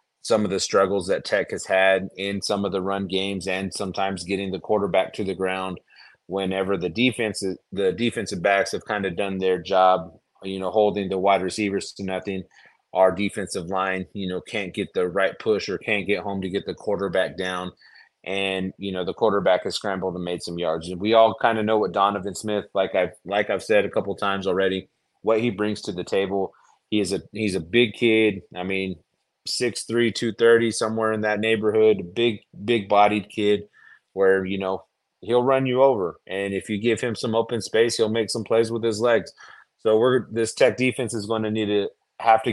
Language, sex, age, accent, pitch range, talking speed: English, male, 30-49, American, 95-110 Hz, 210 wpm